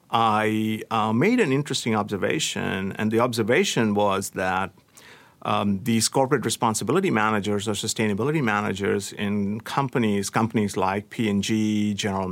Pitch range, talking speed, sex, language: 105-135 Hz, 120 wpm, male, English